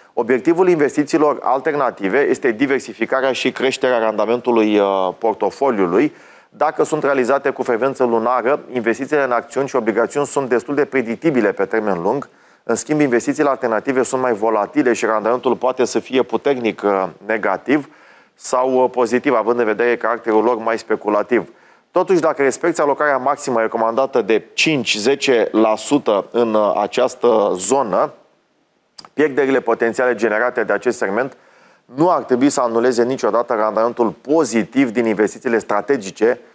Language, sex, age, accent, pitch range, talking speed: Romanian, male, 30-49, native, 115-140 Hz, 130 wpm